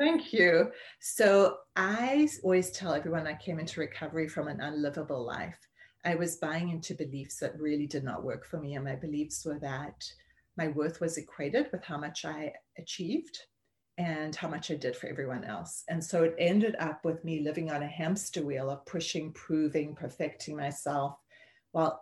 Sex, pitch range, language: female, 150-185 Hz, English